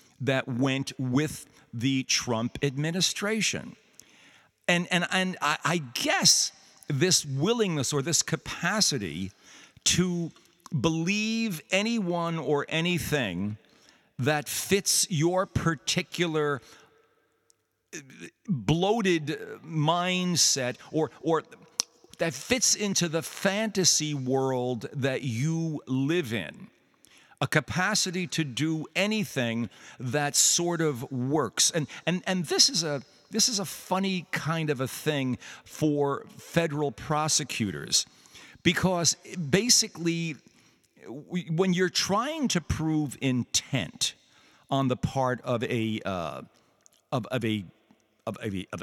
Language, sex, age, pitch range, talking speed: English, male, 50-69, 130-175 Hz, 105 wpm